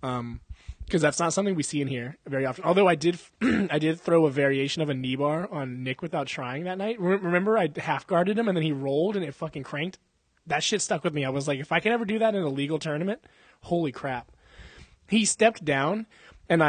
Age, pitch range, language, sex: 20-39, 145-195 Hz, English, male